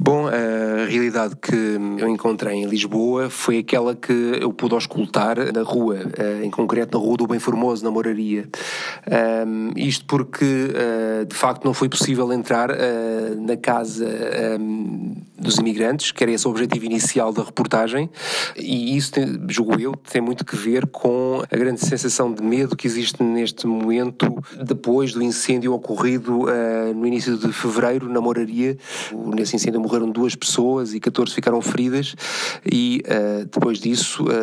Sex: male